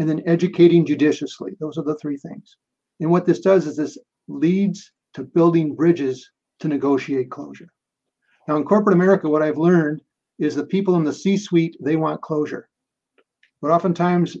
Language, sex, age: English, male, 50-69